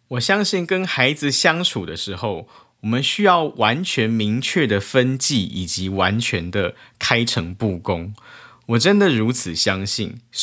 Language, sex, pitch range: Chinese, male, 100-130 Hz